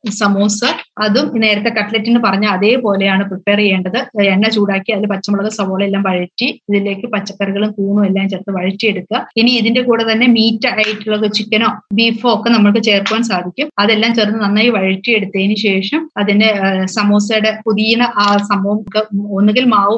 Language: Malayalam